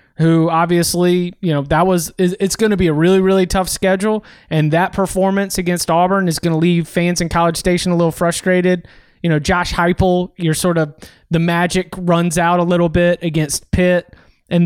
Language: English